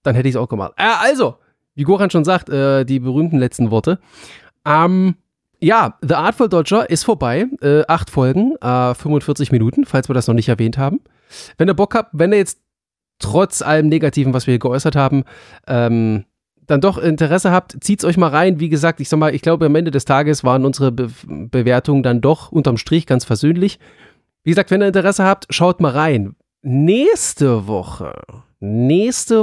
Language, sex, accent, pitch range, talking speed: German, male, German, 130-185 Hz, 195 wpm